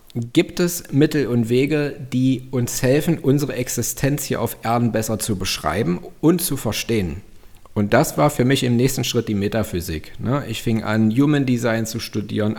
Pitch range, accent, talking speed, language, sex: 115-140 Hz, German, 170 wpm, German, male